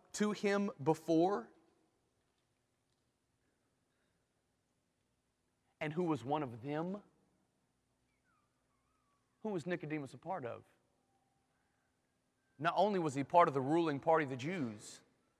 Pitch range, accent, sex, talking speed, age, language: 140-215 Hz, American, male, 105 wpm, 30-49, English